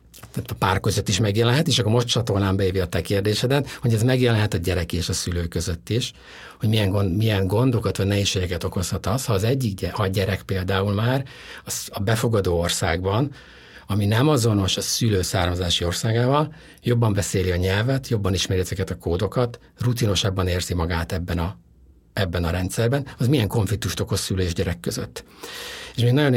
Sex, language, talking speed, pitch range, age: male, Hungarian, 180 wpm, 95-120 Hz, 60-79